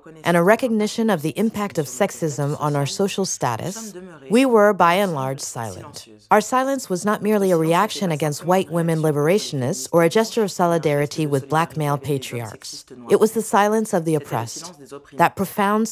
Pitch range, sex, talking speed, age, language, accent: 150-205 Hz, female, 175 wpm, 40-59, French, American